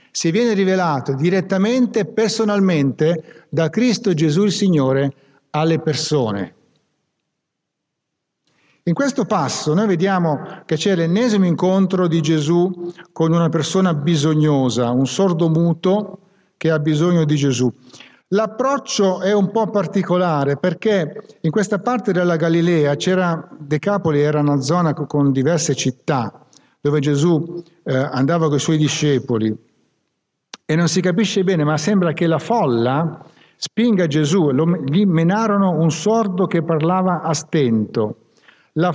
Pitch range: 150-200 Hz